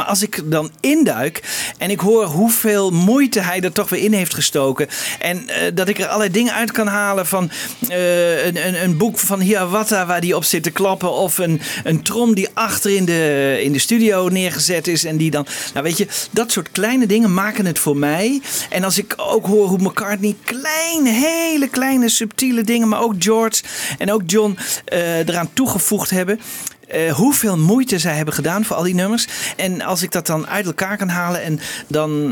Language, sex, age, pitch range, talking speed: Dutch, male, 40-59, 160-210 Hz, 205 wpm